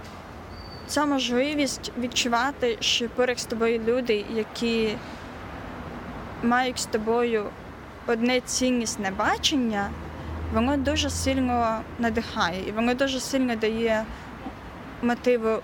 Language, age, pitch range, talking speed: Ukrainian, 20-39, 220-260 Hz, 95 wpm